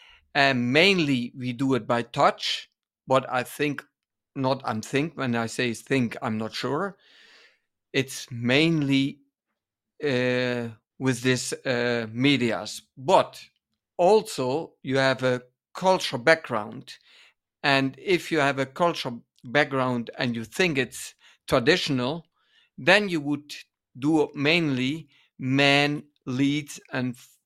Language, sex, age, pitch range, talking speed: English, male, 50-69, 125-155 Hz, 120 wpm